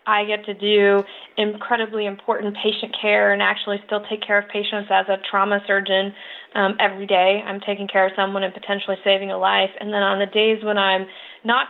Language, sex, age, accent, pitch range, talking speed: English, female, 20-39, American, 195-220 Hz, 205 wpm